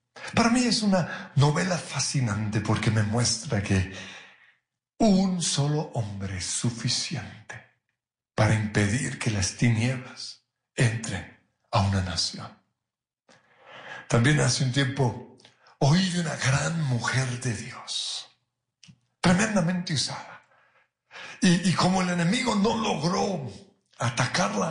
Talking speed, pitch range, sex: 110 wpm, 120-180 Hz, male